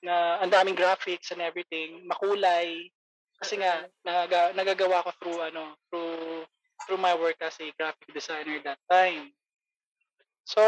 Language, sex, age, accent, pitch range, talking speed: English, male, 20-39, Filipino, 175-220 Hz, 130 wpm